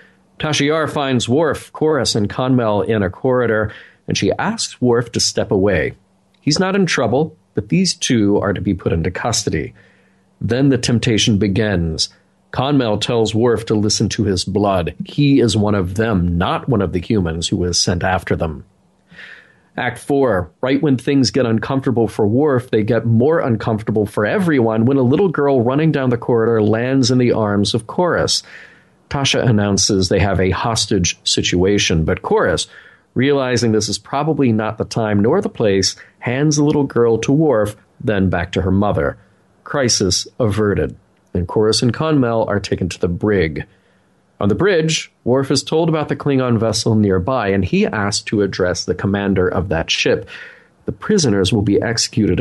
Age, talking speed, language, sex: 40-59, 175 wpm, English, male